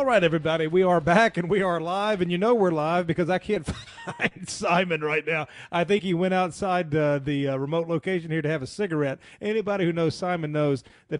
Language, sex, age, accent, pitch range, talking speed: English, male, 40-59, American, 130-175 Hz, 225 wpm